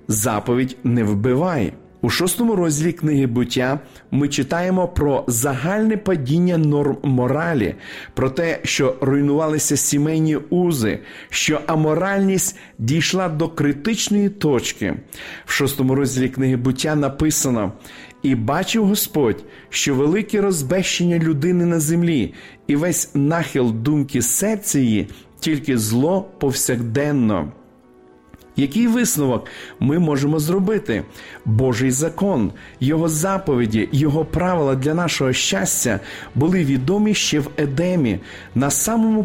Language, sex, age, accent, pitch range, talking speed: Ukrainian, male, 40-59, native, 130-180 Hz, 110 wpm